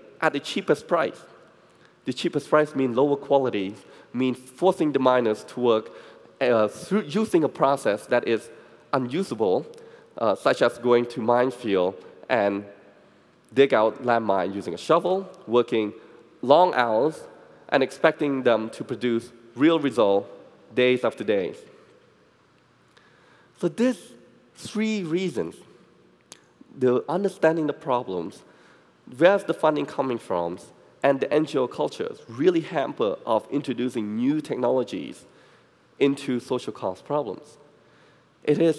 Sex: male